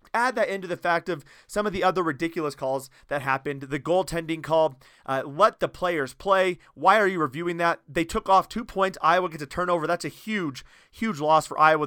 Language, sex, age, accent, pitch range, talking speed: English, male, 30-49, American, 150-185 Hz, 215 wpm